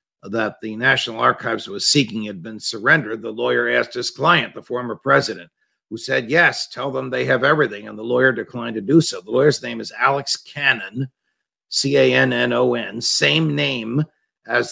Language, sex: English, male